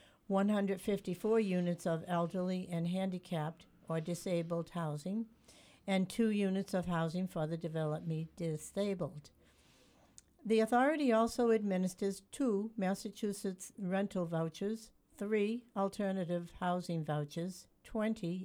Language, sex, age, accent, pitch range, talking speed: English, female, 60-79, American, 165-210 Hz, 100 wpm